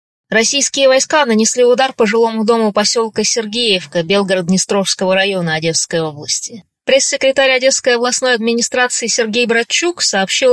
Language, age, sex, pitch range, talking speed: Russian, 20-39, female, 180-230 Hz, 115 wpm